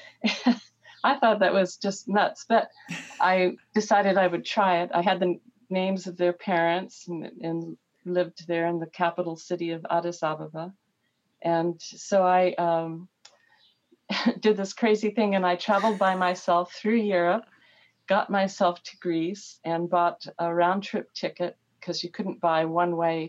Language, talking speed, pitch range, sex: English, 155 wpm, 170-200 Hz, female